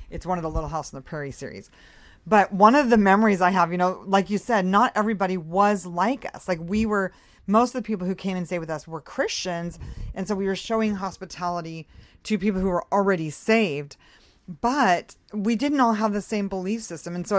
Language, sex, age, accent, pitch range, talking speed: English, female, 40-59, American, 175-220 Hz, 225 wpm